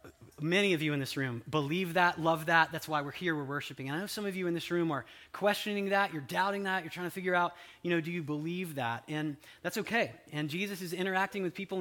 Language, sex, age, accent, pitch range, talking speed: English, male, 20-39, American, 145-185 Hz, 260 wpm